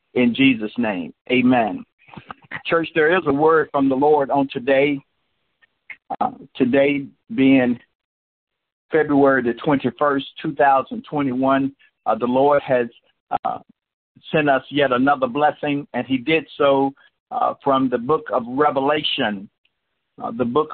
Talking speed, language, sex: 125 wpm, English, male